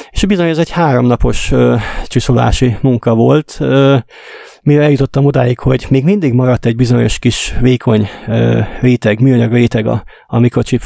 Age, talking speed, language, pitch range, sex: 30-49, 150 wpm, Hungarian, 115-130 Hz, male